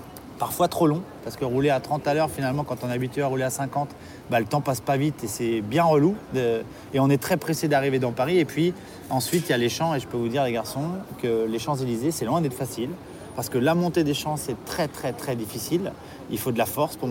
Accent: French